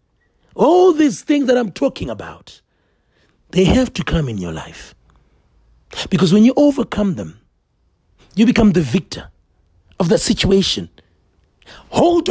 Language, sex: English, male